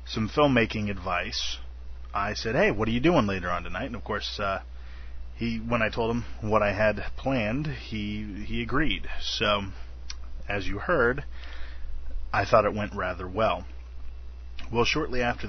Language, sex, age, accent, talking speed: English, male, 30-49, American, 165 wpm